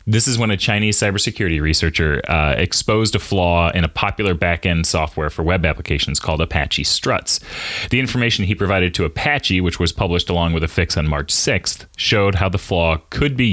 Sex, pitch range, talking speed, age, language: male, 80-105 Hz, 195 wpm, 30-49, English